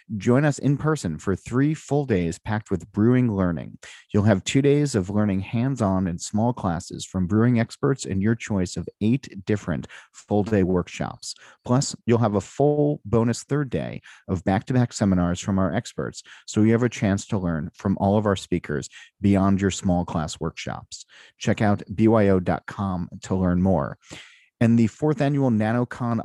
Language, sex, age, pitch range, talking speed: English, male, 40-59, 95-120 Hz, 180 wpm